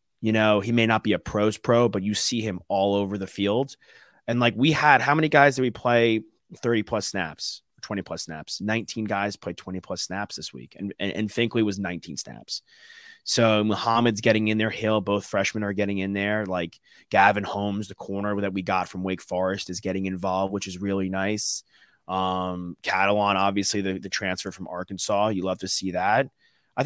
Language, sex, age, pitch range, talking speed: English, male, 30-49, 95-110 Hz, 205 wpm